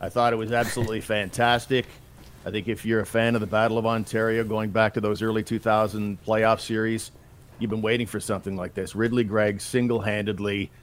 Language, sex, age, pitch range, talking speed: English, male, 50-69, 105-120 Hz, 195 wpm